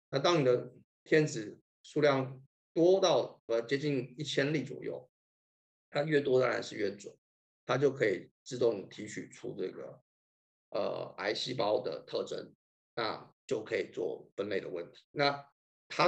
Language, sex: Chinese, male